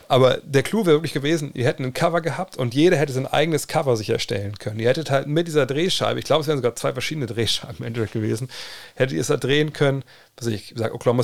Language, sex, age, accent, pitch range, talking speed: German, male, 40-59, German, 115-140 Hz, 250 wpm